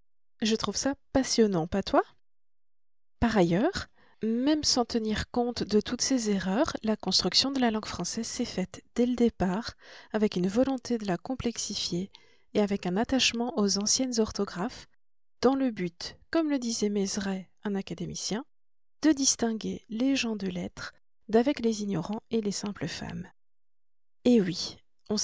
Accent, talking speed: French, 155 wpm